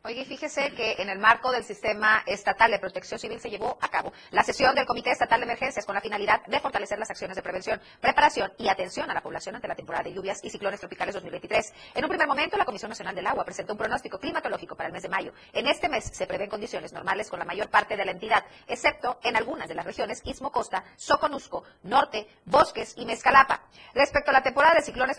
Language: Spanish